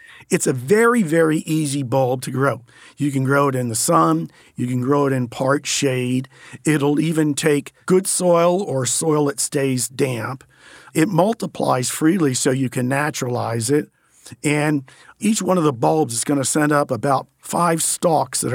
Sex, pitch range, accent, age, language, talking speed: male, 135-160 Hz, American, 50-69, English, 180 wpm